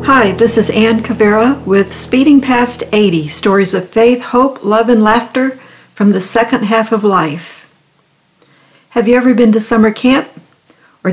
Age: 60-79